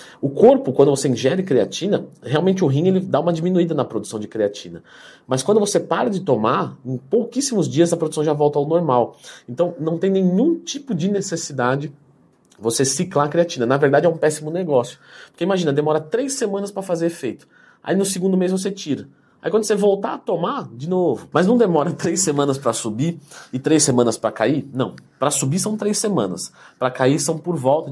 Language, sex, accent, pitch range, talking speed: Portuguese, male, Brazilian, 130-185 Hz, 200 wpm